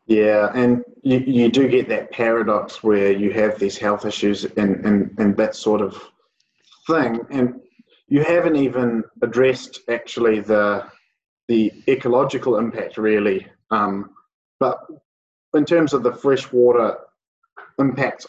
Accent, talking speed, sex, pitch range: Australian, 130 wpm, male, 105-125 Hz